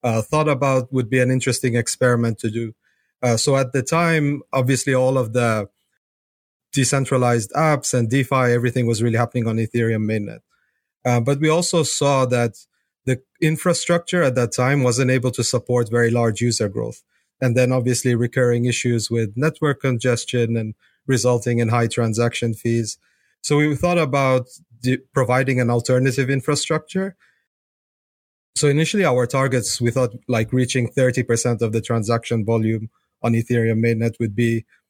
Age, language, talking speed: 30-49, English, 155 wpm